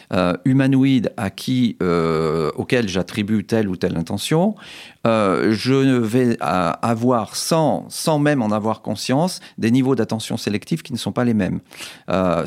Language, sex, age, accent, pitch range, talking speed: French, male, 40-59, French, 95-125 Hz, 160 wpm